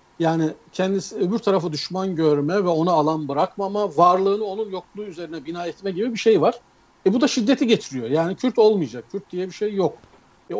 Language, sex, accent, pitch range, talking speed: Turkish, male, native, 150-205 Hz, 195 wpm